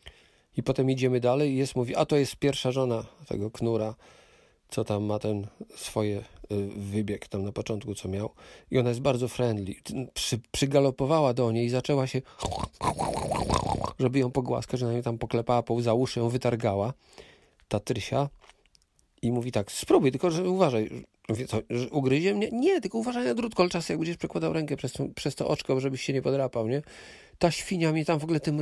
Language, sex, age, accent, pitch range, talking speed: Polish, male, 40-59, native, 120-155 Hz, 185 wpm